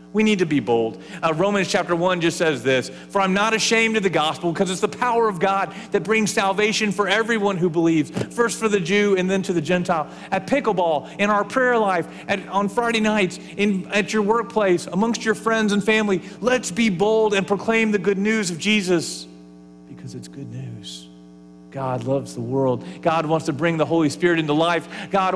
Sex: male